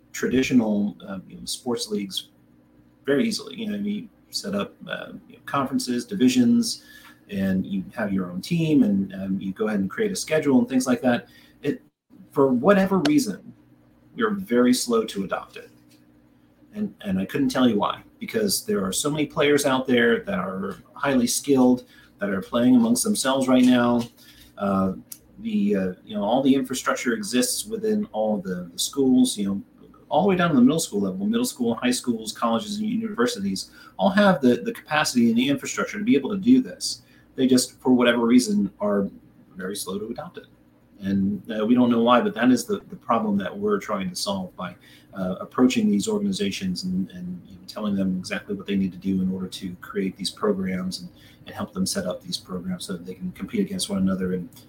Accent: American